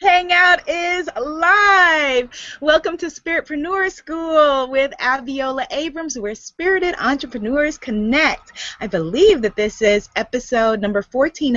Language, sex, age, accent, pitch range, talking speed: English, female, 20-39, American, 215-310 Hz, 115 wpm